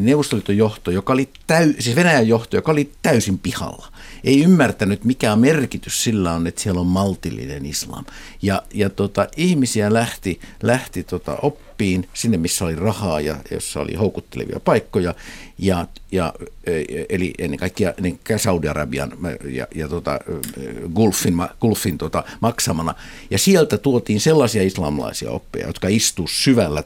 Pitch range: 90-120 Hz